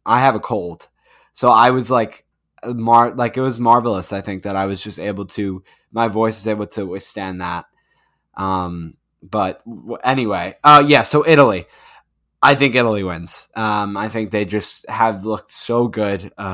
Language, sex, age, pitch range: English, male, 10-29, 95-125 Hz